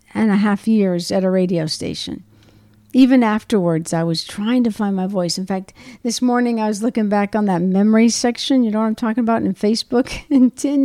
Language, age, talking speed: English, 50-69, 215 wpm